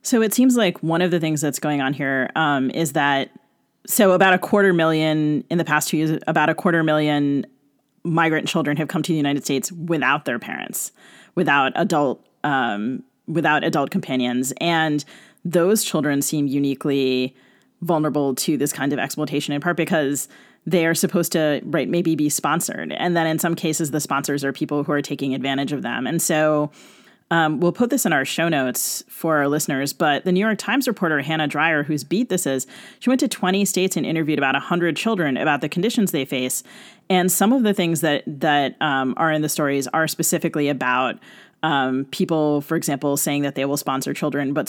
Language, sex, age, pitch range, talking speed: English, female, 30-49, 145-180 Hz, 200 wpm